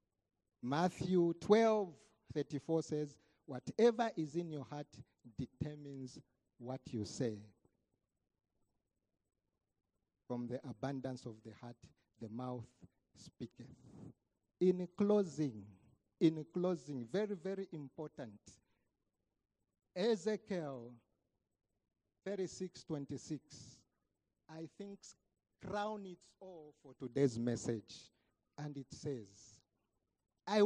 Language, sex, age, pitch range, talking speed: English, male, 50-69, 115-185 Hz, 80 wpm